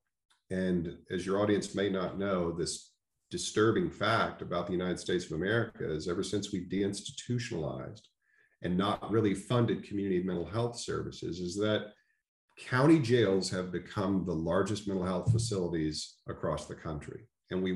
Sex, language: male, English